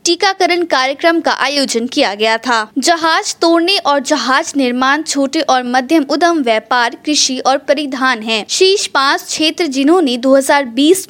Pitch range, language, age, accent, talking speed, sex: 255-330 Hz, Hindi, 20-39, native, 140 wpm, female